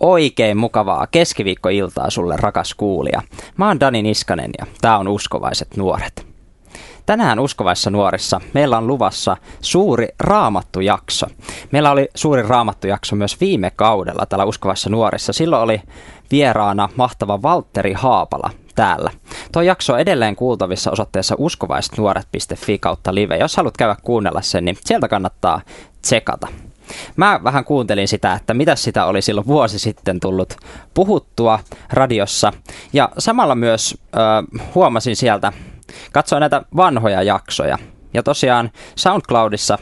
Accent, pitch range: native, 100-130 Hz